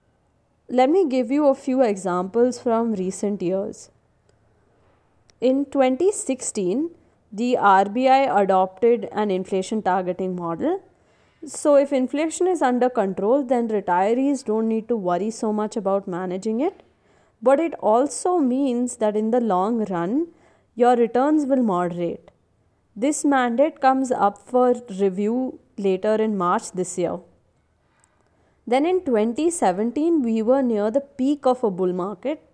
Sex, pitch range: female, 200-275 Hz